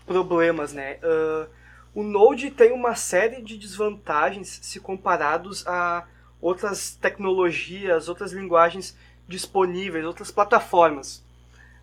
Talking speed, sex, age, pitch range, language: 95 wpm, male, 20-39, 160-210 Hz, English